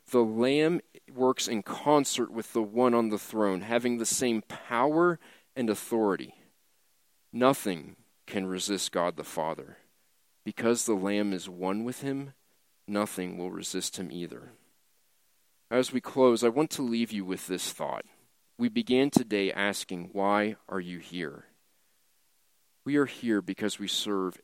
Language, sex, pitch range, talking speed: English, male, 95-125 Hz, 145 wpm